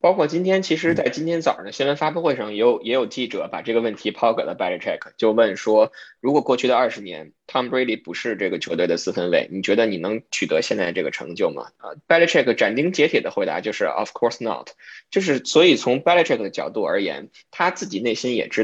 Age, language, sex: 20-39, Chinese, male